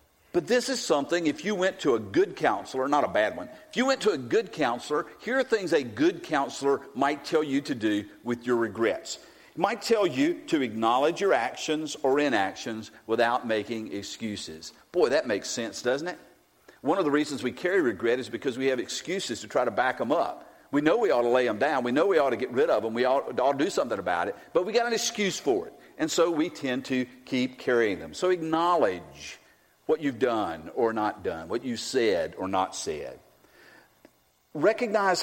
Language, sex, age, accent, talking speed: English, male, 50-69, American, 215 wpm